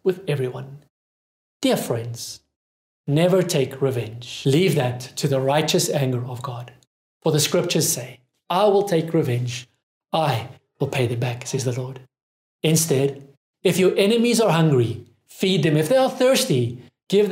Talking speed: 150 wpm